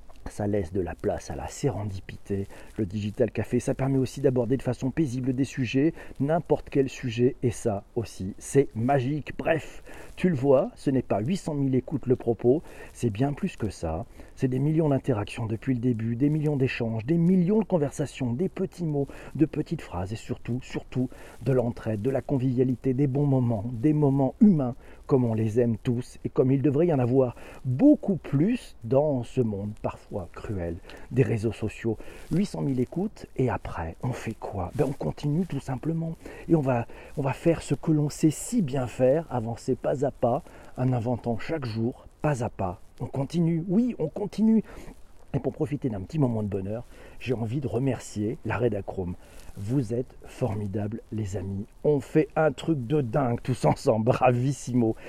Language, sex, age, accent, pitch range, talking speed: French, male, 50-69, French, 115-150 Hz, 185 wpm